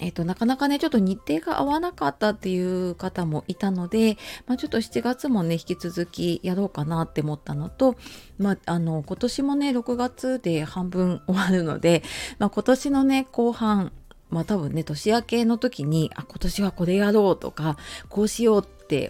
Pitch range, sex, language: 165-225 Hz, female, Japanese